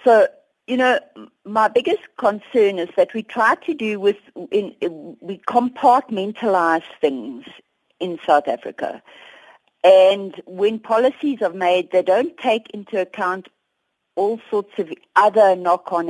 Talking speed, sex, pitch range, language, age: 125 wpm, female, 170-235 Hz, English, 50-69